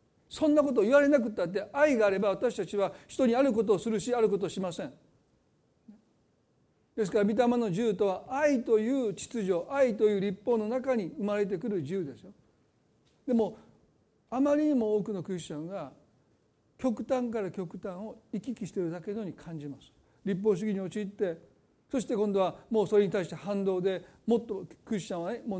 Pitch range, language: 190-230 Hz, Japanese